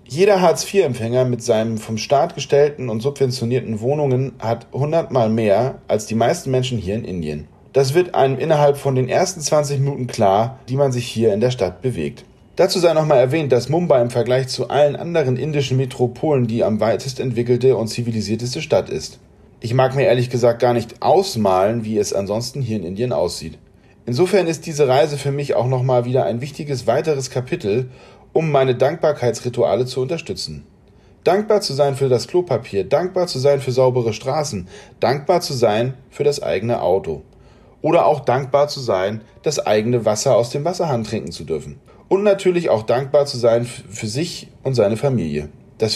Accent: German